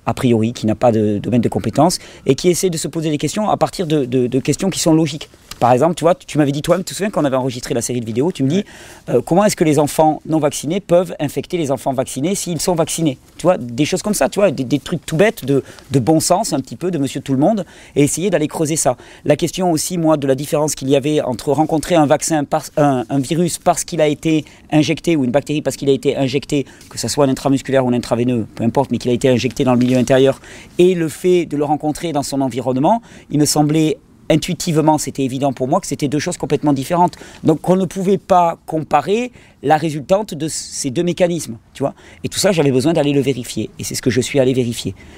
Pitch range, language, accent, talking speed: 130-165 Hz, French, French, 260 wpm